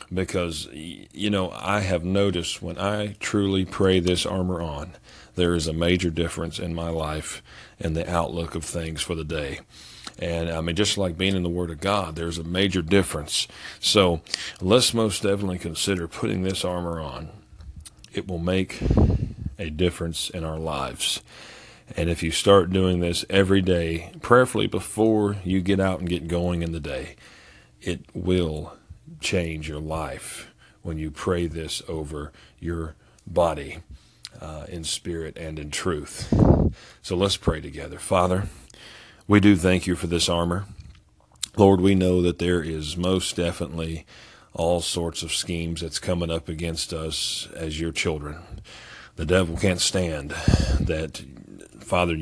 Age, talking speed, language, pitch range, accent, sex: 40-59, 155 wpm, English, 80-95 Hz, American, male